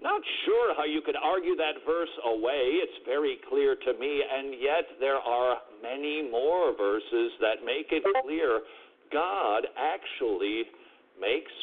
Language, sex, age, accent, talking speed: English, male, 60-79, American, 145 wpm